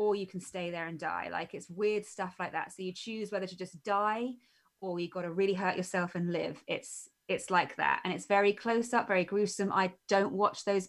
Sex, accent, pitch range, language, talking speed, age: female, British, 175-210 Hz, English, 240 wpm, 20-39